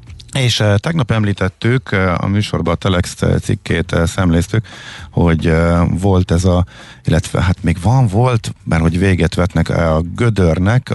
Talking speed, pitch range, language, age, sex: 130 wpm, 85-105 Hz, Hungarian, 50-69, male